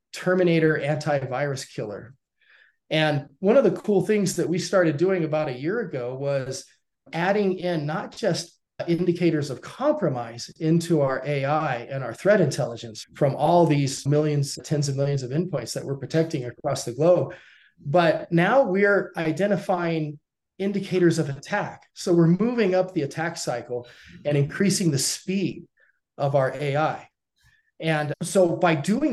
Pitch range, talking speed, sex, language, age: 145-180 Hz, 150 wpm, male, English, 30-49